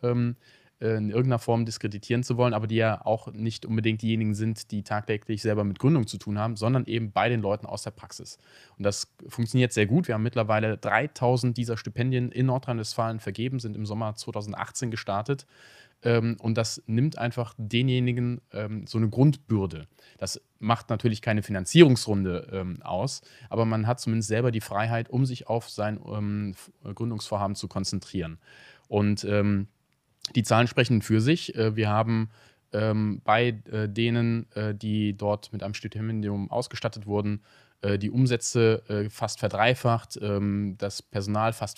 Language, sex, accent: German, male, German